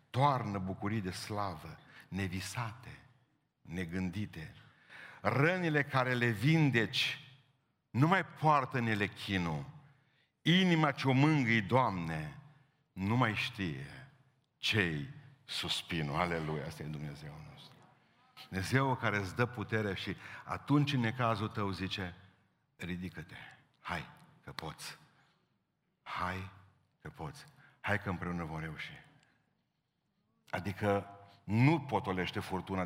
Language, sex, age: Romanian, male, 60-79